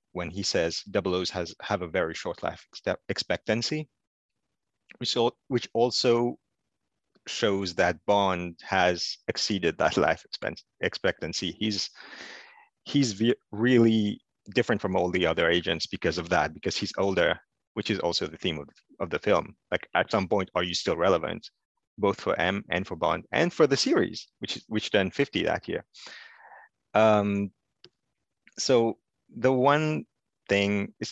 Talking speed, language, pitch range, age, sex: 150 wpm, English, 90-120 Hz, 30-49, male